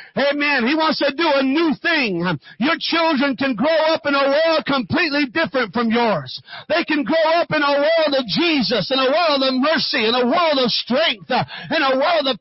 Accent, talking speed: American, 210 wpm